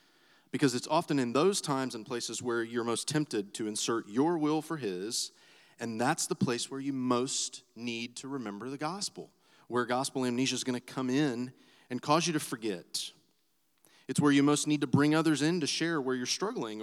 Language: English